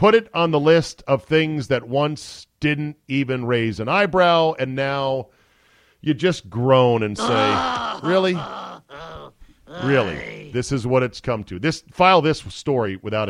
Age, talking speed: 40-59, 155 wpm